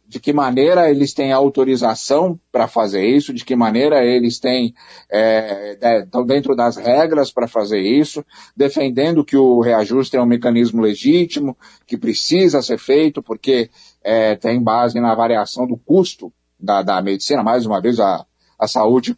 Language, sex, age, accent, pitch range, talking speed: Portuguese, male, 50-69, Brazilian, 120-150 Hz, 150 wpm